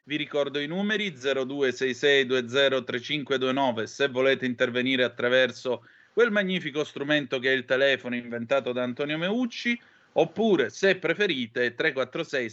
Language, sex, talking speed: Italian, male, 110 wpm